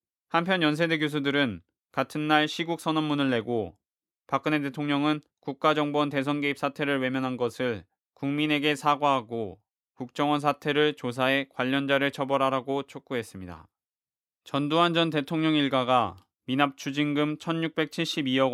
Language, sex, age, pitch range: Korean, male, 20-39, 125-145 Hz